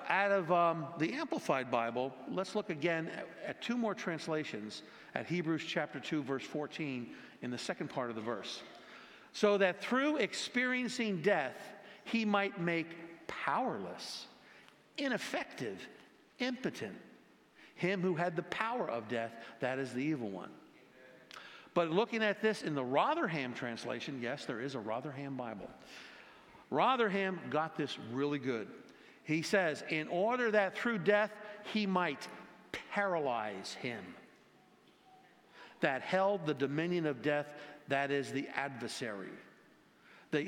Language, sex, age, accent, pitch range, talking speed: English, male, 50-69, American, 145-210 Hz, 135 wpm